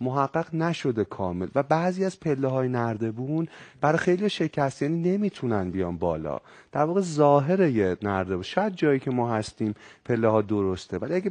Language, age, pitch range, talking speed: Persian, 30-49, 115-165 Hz, 150 wpm